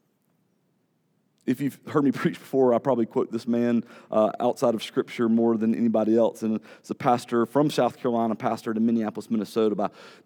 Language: English